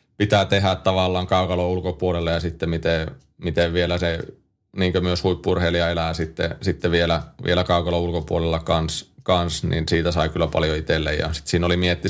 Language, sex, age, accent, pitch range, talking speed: Finnish, male, 30-49, native, 80-90 Hz, 160 wpm